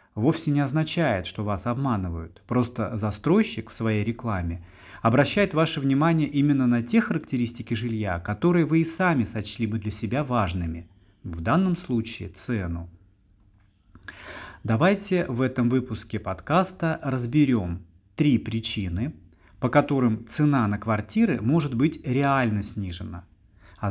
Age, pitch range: 30-49, 100-135 Hz